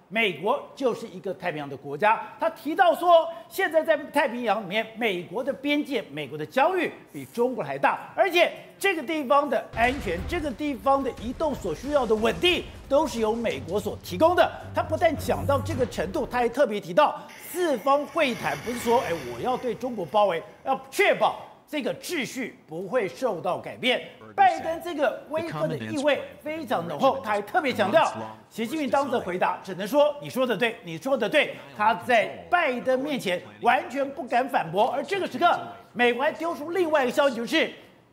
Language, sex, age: Chinese, male, 50-69